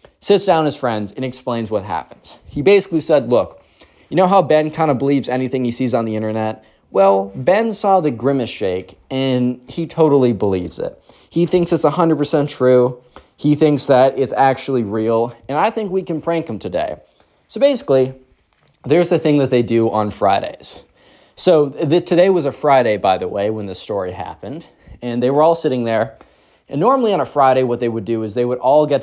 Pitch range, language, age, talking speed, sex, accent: 115-155 Hz, English, 20-39, 205 wpm, male, American